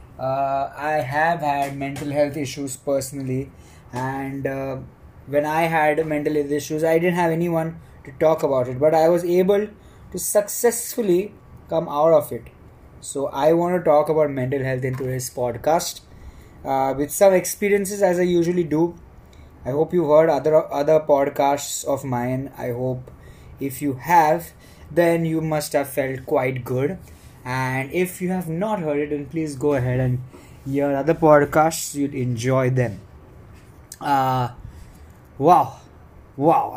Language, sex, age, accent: English, male, 20-39, Indian